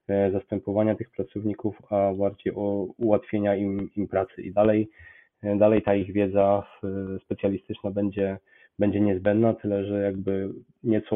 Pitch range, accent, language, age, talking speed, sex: 100-110 Hz, native, Polish, 20-39, 130 wpm, male